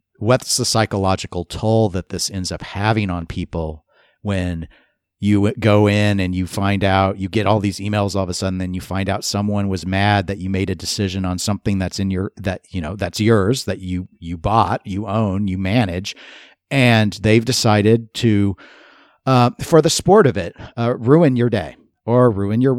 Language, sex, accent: English, male, American